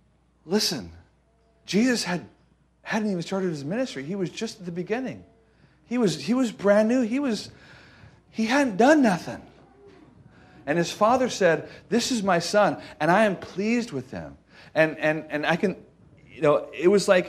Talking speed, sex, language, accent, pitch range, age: 175 wpm, male, English, American, 130-190 Hz, 50-69